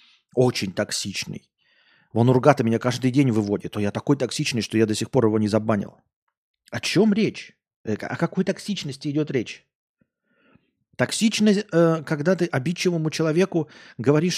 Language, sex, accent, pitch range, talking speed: Russian, male, native, 115-175 Hz, 140 wpm